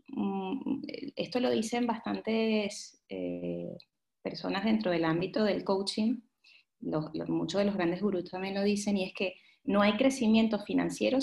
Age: 30-49